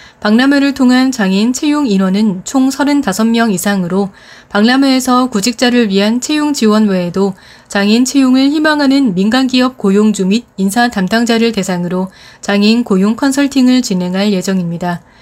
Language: Korean